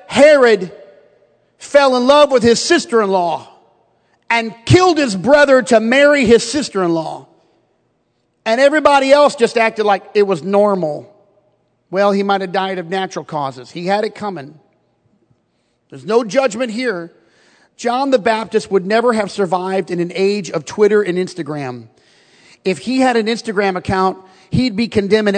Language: English